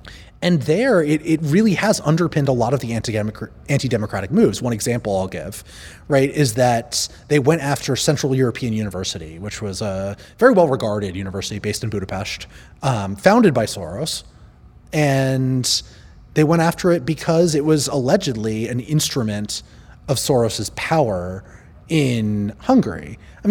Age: 30-49